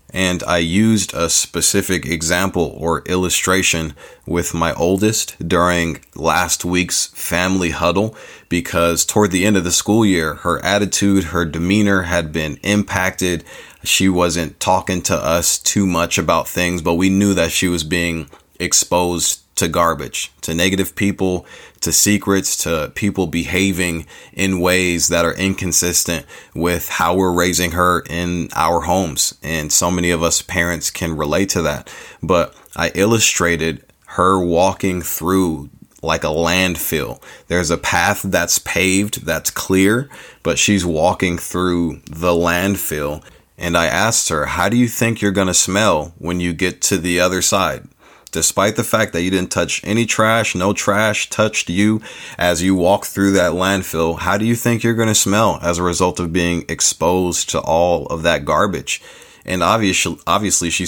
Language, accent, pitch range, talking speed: English, American, 85-100 Hz, 160 wpm